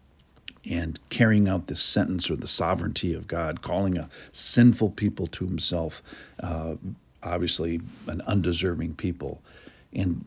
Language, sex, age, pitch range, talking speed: English, male, 50-69, 80-105 Hz, 130 wpm